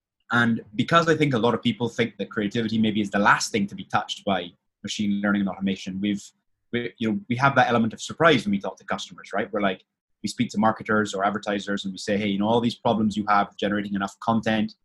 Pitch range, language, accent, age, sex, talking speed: 100-120 Hz, English, British, 20-39, male, 250 wpm